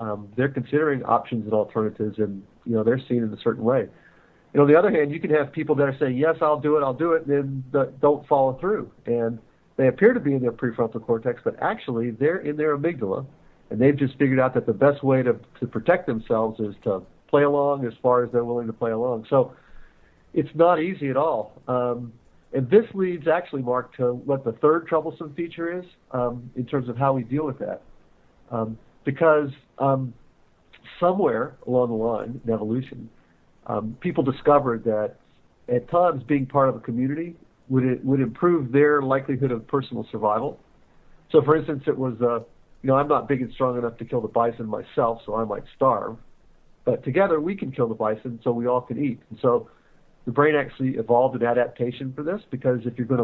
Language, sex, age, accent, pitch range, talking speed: English, male, 50-69, American, 115-145 Hz, 210 wpm